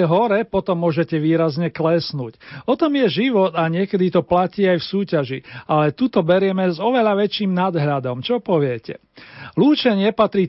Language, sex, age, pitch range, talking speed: Slovak, male, 40-59, 155-195 Hz, 155 wpm